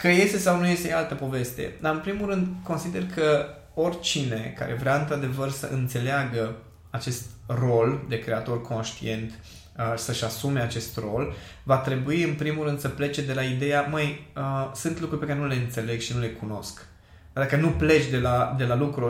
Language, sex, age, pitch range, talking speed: Romanian, male, 20-39, 125-165 Hz, 185 wpm